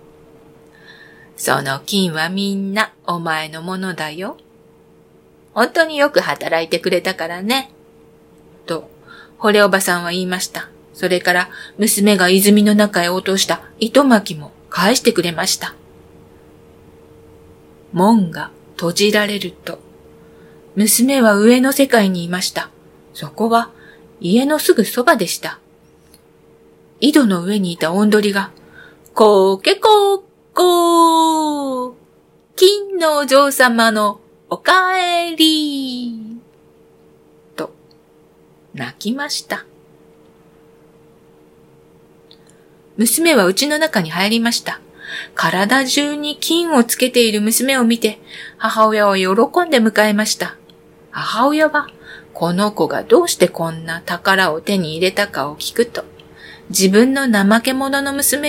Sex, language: female, Japanese